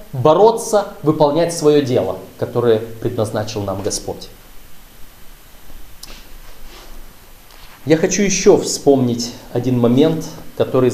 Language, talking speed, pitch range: Russian, 80 wpm, 145-215 Hz